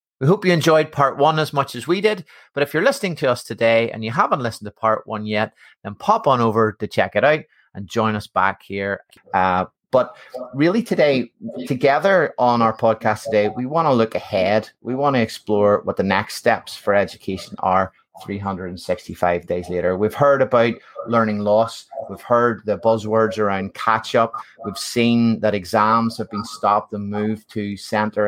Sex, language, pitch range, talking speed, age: male, English, 105-120 Hz, 190 wpm, 30-49